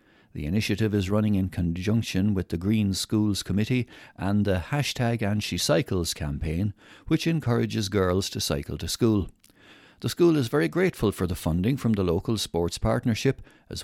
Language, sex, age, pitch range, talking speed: English, male, 60-79, 90-115 Hz, 160 wpm